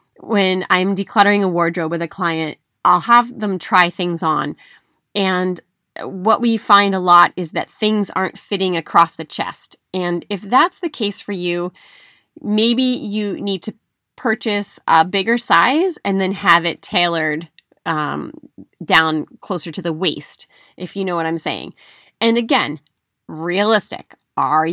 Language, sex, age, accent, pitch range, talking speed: English, female, 30-49, American, 165-220 Hz, 155 wpm